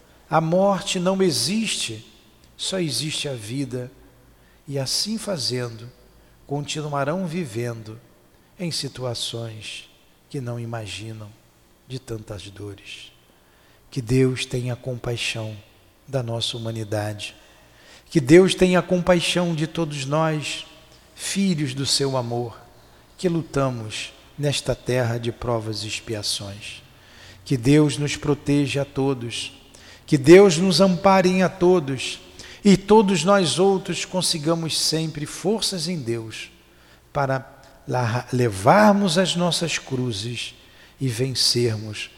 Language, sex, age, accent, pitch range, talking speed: Portuguese, male, 50-69, Brazilian, 115-165 Hz, 105 wpm